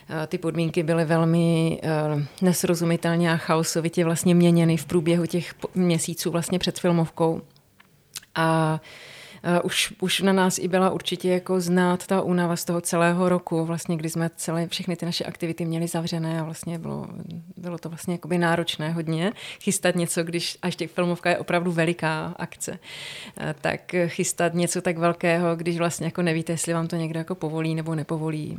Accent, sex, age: native, female, 30-49